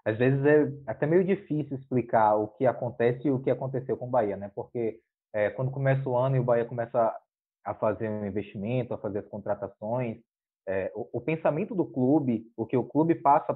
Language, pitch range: Portuguese, 120-165 Hz